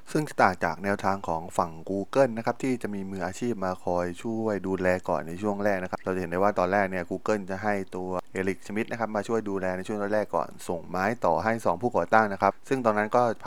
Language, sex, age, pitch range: Thai, male, 20-39, 90-110 Hz